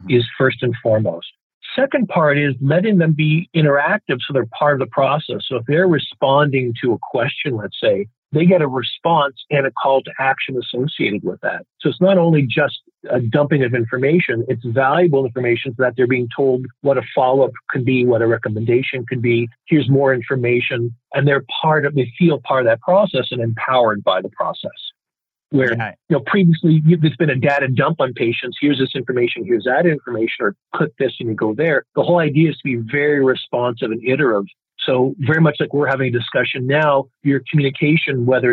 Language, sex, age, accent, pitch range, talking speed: English, male, 50-69, American, 125-155 Hz, 200 wpm